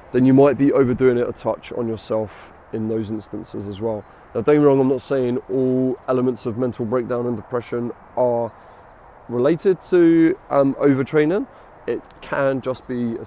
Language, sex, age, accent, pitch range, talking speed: English, male, 20-39, British, 115-140 Hz, 180 wpm